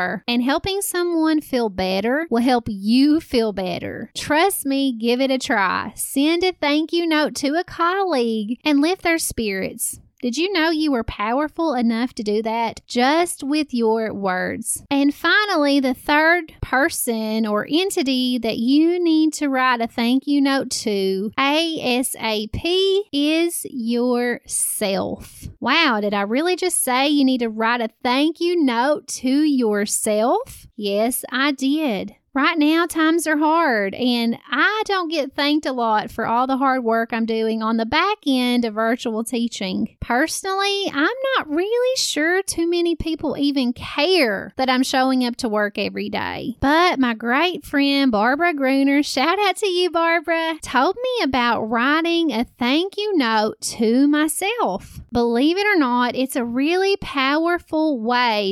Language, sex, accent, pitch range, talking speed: English, female, American, 235-325 Hz, 160 wpm